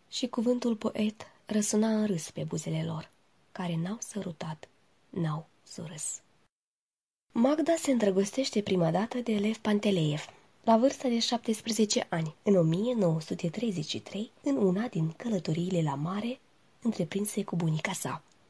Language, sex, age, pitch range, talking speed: Romanian, female, 20-39, 175-230 Hz, 125 wpm